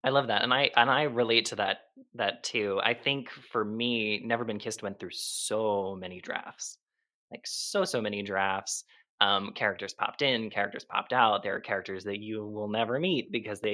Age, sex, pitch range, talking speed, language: 20-39, male, 100-120 Hz, 200 wpm, English